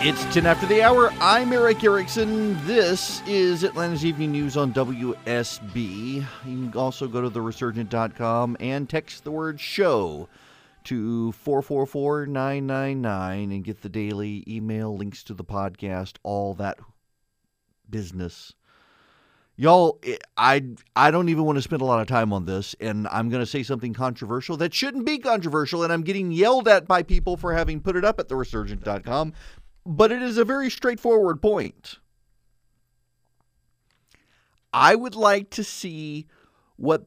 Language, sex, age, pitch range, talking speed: English, male, 40-59, 110-165 Hz, 150 wpm